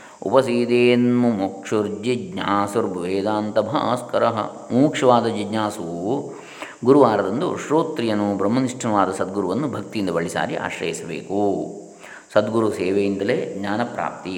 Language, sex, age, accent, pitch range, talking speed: Kannada, male, 20-39, native, 100-115 Hz, 65 wpm